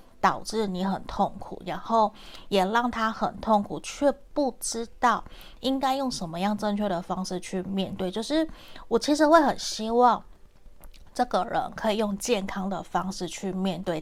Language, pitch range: Chinese, 185-225 Hz